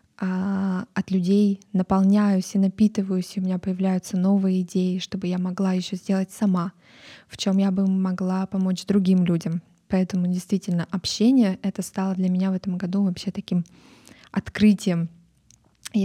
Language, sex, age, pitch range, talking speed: Russian, female, 20-39, 185-205 Hz, 145 wpm